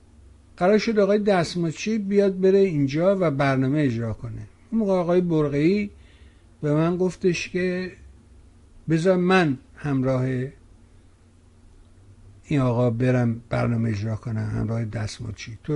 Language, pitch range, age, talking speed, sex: Persian, 105-150 Hz, 60-79, 120 wpm, male